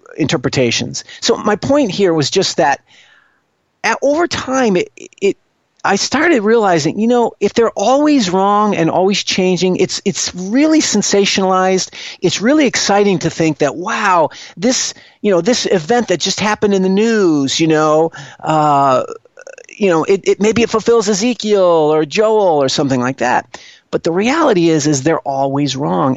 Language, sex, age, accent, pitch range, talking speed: English, male, 40-59, American, 140-210 Hz, 165 wpm